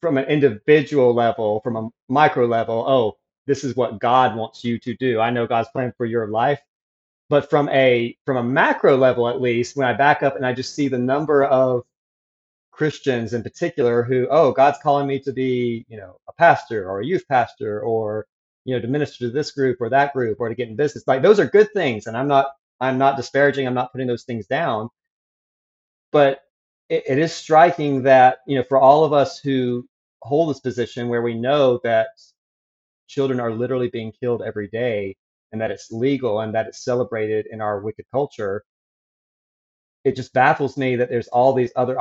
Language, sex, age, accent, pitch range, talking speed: English, male, 30-49, American, 115-140 Hz, 205 wpm